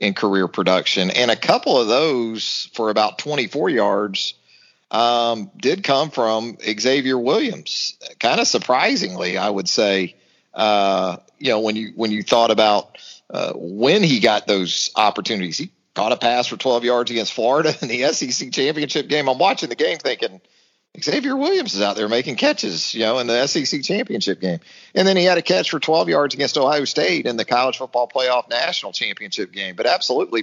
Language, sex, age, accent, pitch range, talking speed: English, male, 40-59, American, 105-130 Hz, 185 wpm